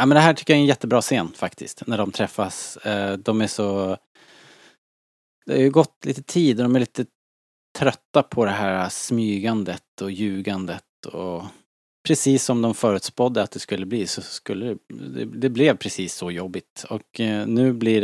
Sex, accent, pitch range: male, Norwegian, 95-125 Hz